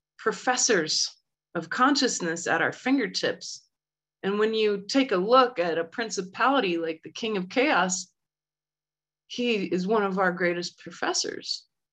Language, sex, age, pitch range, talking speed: English, female, 30-49, 170-205 Hz, 135 wpm